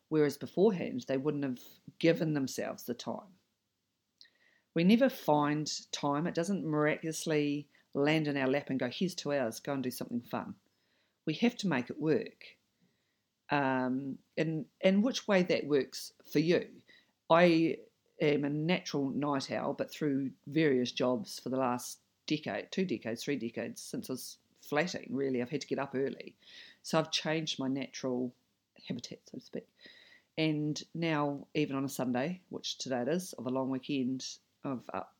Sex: female